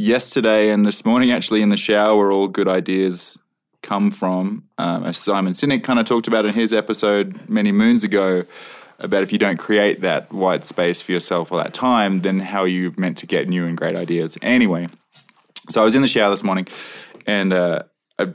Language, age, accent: English, 20-39, Australian